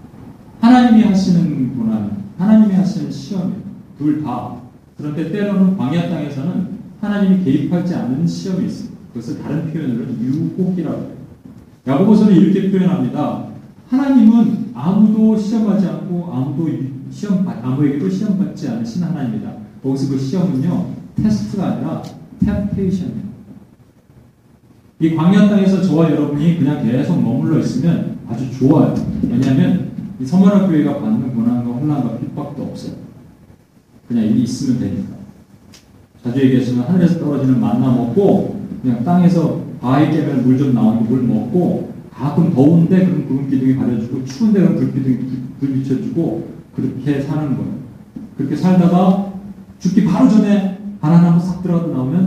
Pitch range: 135-195 Hz